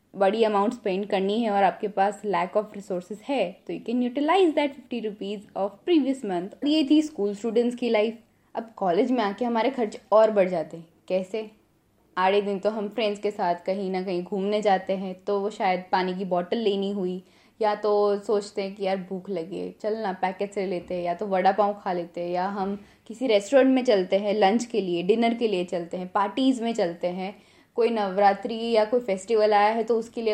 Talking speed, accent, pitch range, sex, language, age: 215 wpm, native, 190-235 Hz, female, Hindi, 20-39